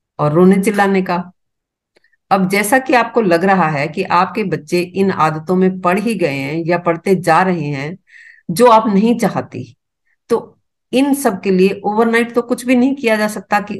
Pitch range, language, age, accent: 160-205 Hz, Hindi, 50-69, native